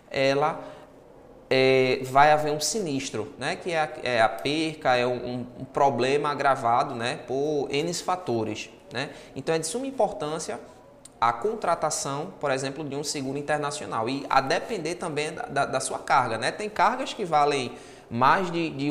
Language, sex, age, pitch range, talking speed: Portuguese, male, 20-39, 130-165 Hz, 170 wpm